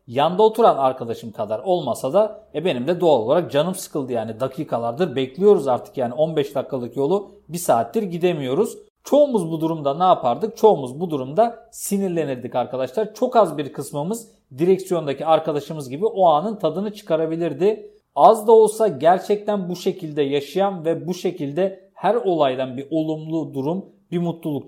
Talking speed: 150 wpm